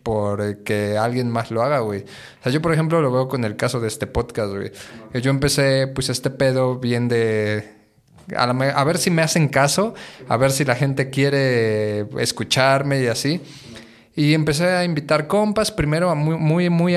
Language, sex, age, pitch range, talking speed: Spanish, male, 20-39, 120-160 Hz, 195 wpm